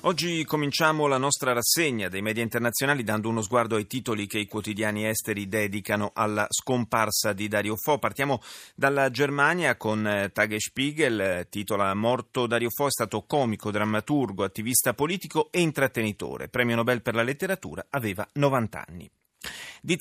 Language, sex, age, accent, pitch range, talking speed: Italian, male, 30-49, native, 105-145 Hz, 150 wpm